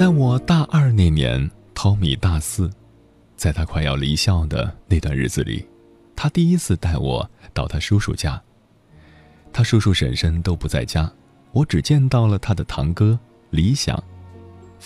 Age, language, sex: 30-49, Chinese, male